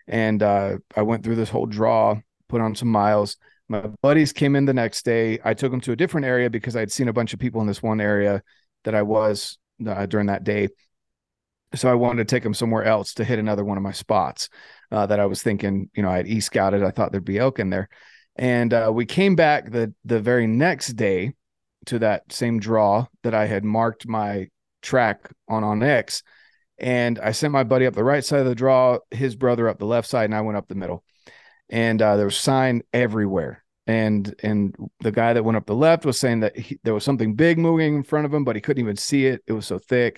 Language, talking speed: English, 240 wpm